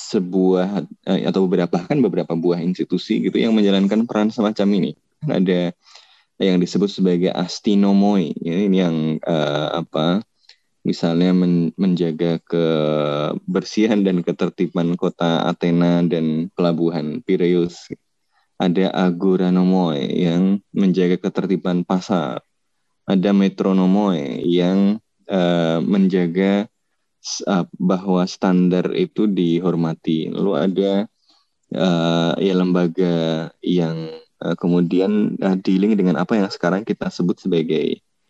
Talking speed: 100 wpm